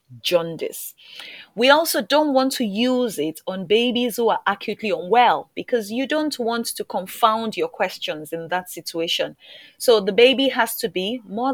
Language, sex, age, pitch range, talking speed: English, female, 30-49, 170-240 Hz, 165 wpm